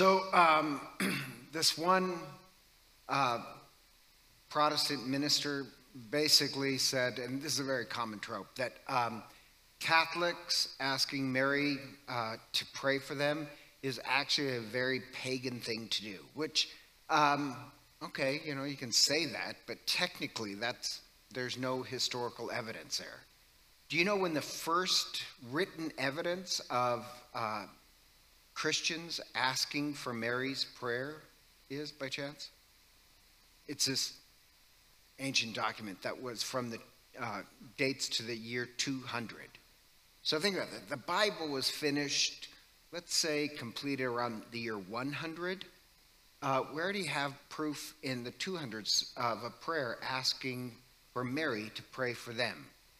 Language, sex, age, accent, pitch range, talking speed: English, male, 50-69, American, 125-150 Hz, 130 wpm